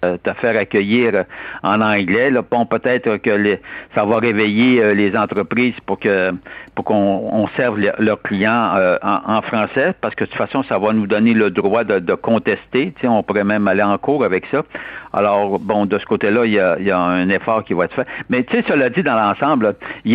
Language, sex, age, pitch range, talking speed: French, male, 60-79, 105-125 Hz, 225 wpm